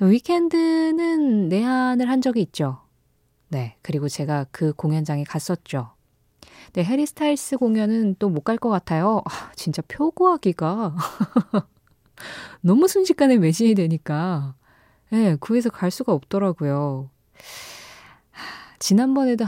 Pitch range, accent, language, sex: 155-225 Hz, native, Korean, female